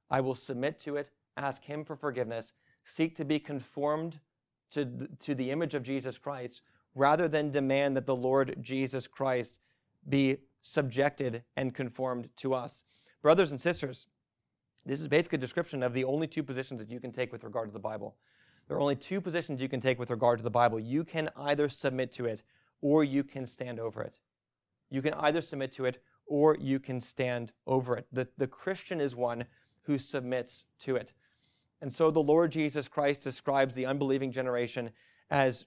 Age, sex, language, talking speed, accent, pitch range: 30-49, male, English, 190 wpm, American, 125-145 Hz